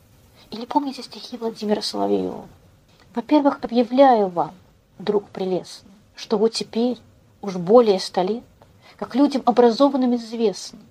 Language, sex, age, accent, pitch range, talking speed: Russian, female, 40-59, native, 195-240 Hz, 115 wpm